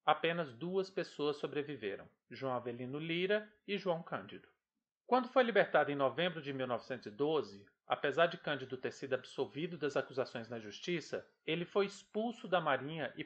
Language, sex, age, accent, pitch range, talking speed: Portuguese, male, 40-59, Brazilian, 145-195 Hz, 150 wpm